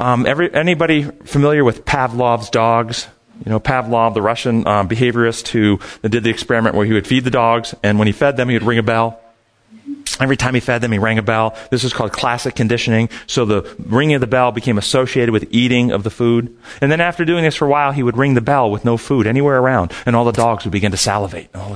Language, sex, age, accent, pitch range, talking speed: English, male, 40-59, American, 105-130 Hz, 240 wpm